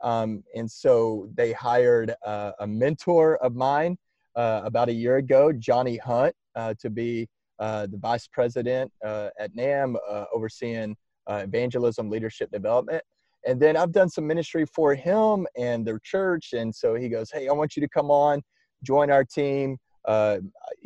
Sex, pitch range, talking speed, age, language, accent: male, 110-145 Hz, 170 wpm, 30-49, English, American